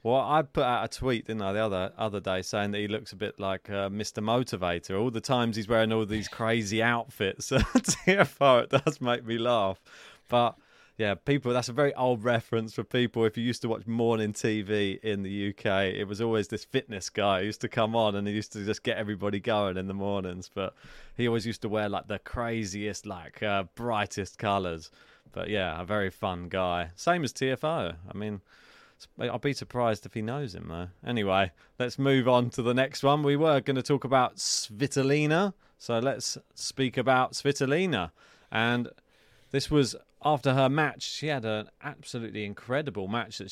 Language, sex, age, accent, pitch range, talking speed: English, male, 20-39, British, 105-135 Hz, 200 wpm